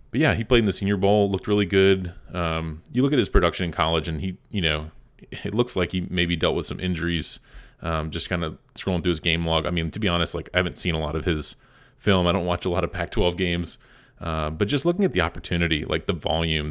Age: 30-49